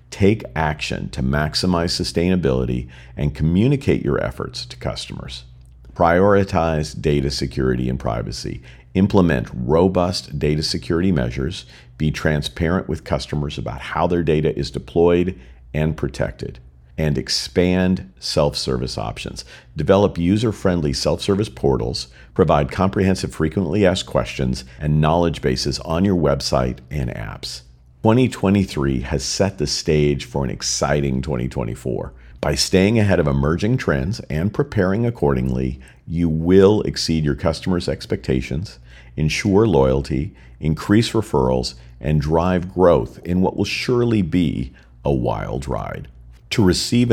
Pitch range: 65-95 Hz